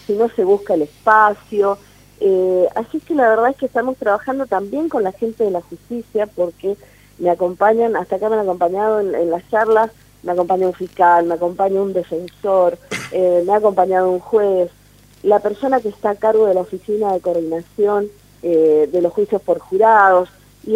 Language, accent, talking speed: Spanish, Argentinian, 190 wpm